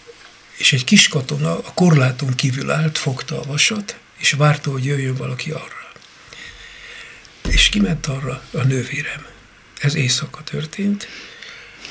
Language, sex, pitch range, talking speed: Hungarian, male, 130-160 Hz, 125 wpm